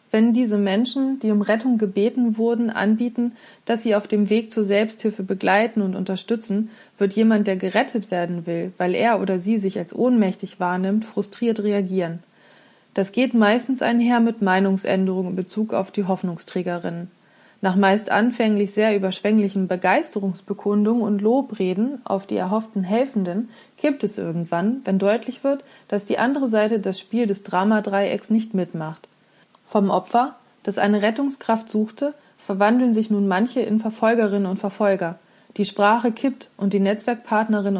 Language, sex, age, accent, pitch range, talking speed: German, female, 30-49, German, 195-225 Hz, 150 wpm